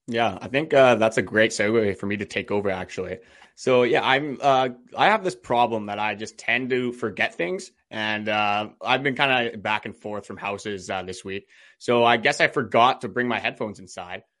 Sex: male